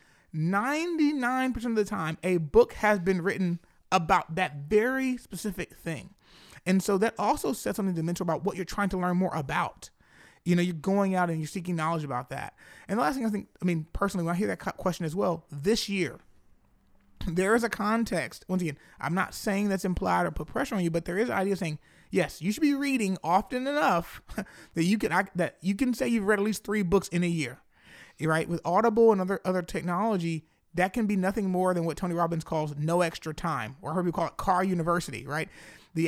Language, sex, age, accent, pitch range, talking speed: English, male, 30-49, American, 165-210 Hz, 225 wpm